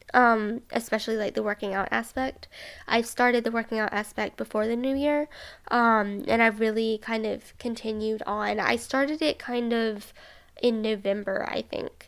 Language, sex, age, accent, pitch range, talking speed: English, female, 10-29, American, 210-245 Hz, 170 wpm